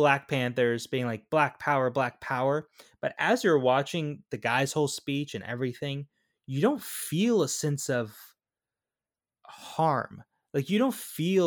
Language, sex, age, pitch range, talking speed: English, male, 20-39, 115-155 Hz, 150 wpm